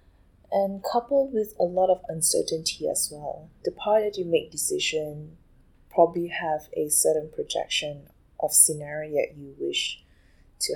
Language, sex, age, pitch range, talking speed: English, female, 20-39, 145-215 Hz, 145 wpm